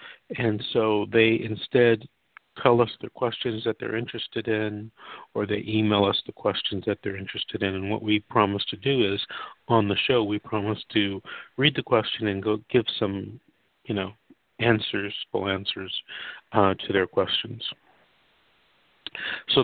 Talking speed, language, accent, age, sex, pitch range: 160 wpm, English, American, 50-69, male, 105-120 Hz